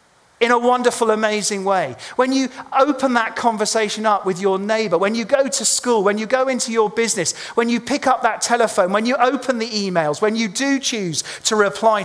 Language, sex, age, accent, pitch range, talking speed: English, male, 40-59, British, 155-230 Hz, 210 wpm